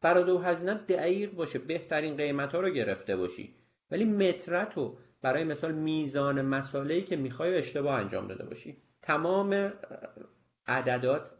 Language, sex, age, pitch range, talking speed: Persian, male, 40-59, 120-160 Hz, 125 wpm